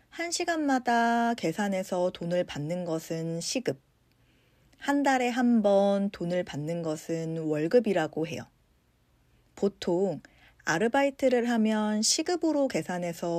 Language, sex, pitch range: Korean, female, 160-245 Hz